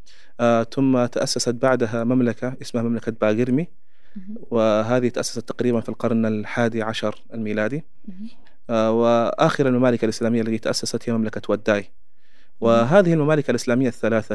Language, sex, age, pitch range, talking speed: Arabic, male, 30-49, 115-130 Hz, 120 wpm